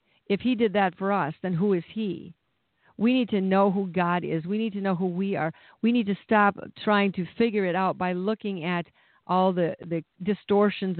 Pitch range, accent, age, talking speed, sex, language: 180-210 Hz, American, 50-69, 220 wpm, female, English